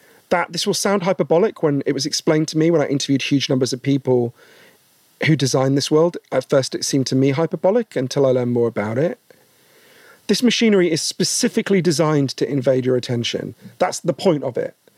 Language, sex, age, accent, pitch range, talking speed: English, male, 40-59, British, 135-180 Hz, 195 wpm